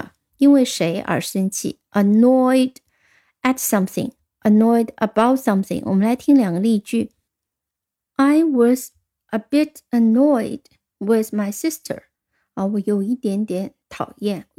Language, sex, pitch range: Chinese, female, 205-265 Hz